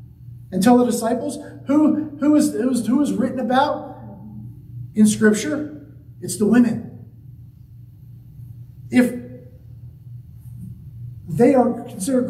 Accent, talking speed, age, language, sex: American, 100 wpm, 40-59, English, male